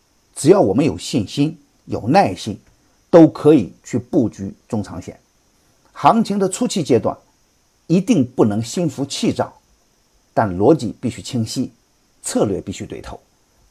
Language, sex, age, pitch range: Chinese, male, 50-69, 110-160 Hz